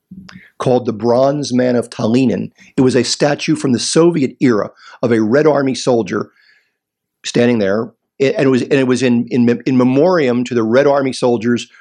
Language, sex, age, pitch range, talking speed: English, male, 50-69, 120-175 Hz, 185 wpm